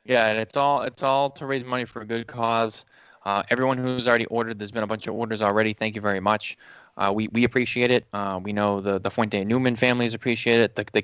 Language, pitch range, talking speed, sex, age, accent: English, 100-120 Hz, 255 wpm, male, 20-39, American